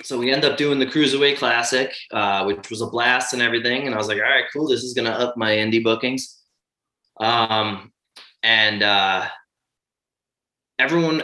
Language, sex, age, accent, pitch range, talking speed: English, male, 20-39, American, 105-130 Hz, 180 wpm